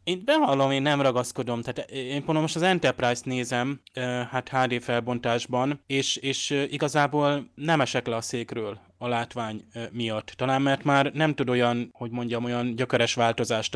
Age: 20-39